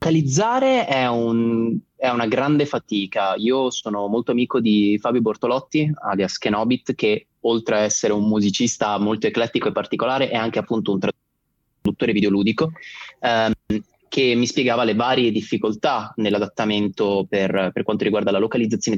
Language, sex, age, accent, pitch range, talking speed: Italian, male, 20-39, native, 105-130 Hz, 145 wpm